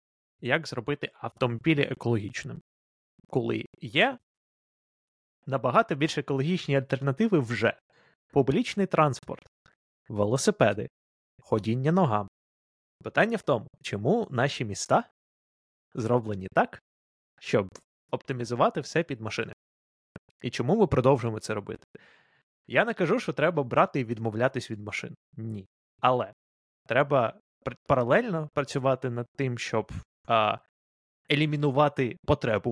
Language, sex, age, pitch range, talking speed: Ukrainian, male, 20-39, 110-150 Hz, 100 wpm